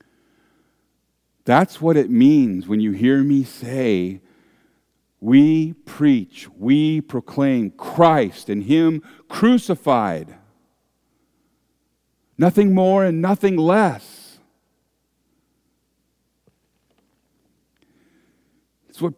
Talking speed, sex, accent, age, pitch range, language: 75 wpm, male, American, 50-69, 115-170 Hz, English